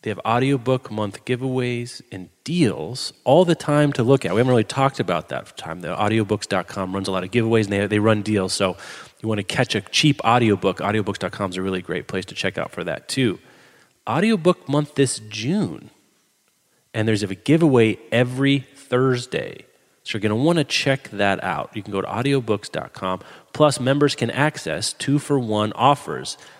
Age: 30-49